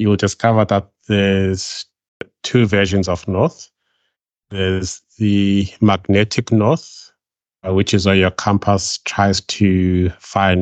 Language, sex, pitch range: English, male, 90-100 Hz